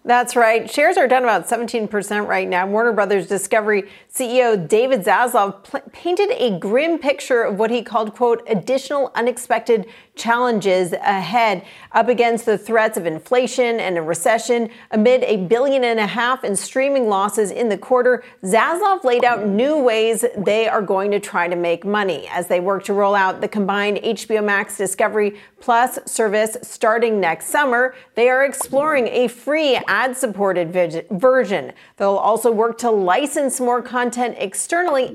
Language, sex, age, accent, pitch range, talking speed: English, female, 40-59, American, 200-250 Hz, 160 wpm